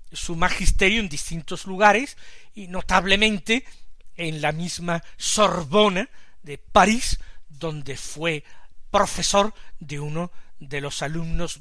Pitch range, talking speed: 150-200 Hz, 110 wpm